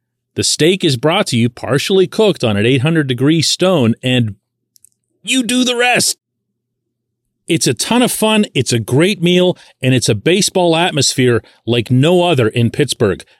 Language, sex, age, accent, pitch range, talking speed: English, male, 40-59, American, 130-190 Hz, 160 wpm